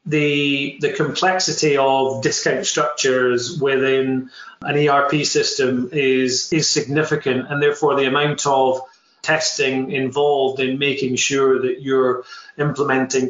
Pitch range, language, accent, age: 130-160 Hz, English, British, 30-49